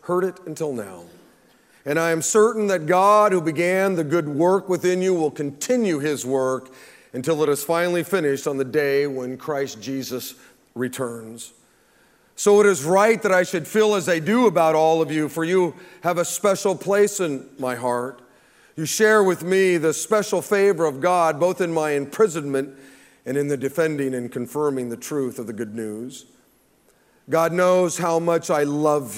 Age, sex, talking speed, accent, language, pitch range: 40-59, male, 180 wpm, American, English, 140-180 Hz